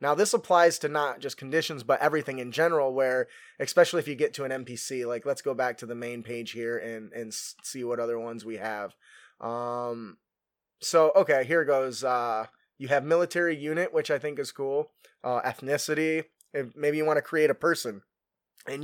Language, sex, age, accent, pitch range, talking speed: English, male, 20-39, American, 125-165 Hz, 200 wpm